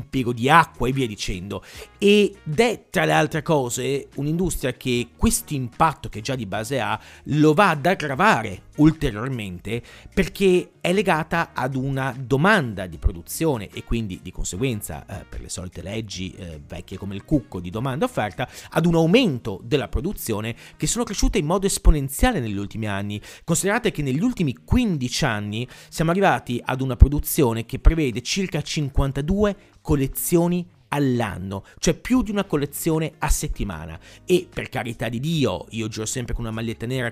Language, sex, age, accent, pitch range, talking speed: Italian, male, 40-59, native, 110-160 Hz, 165 wpm